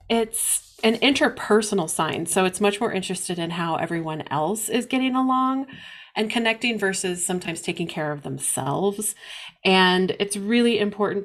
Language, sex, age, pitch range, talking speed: English, female, 30-49, 170-210 Hz, 150 wpm